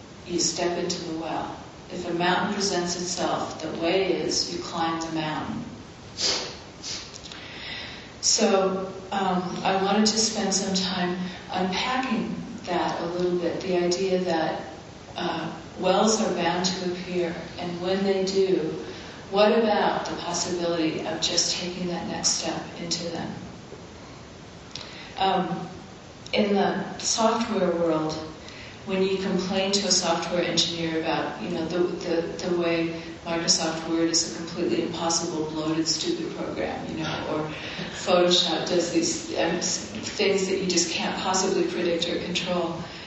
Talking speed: 135 wpm